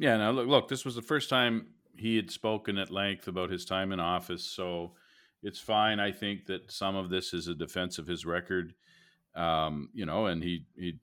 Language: English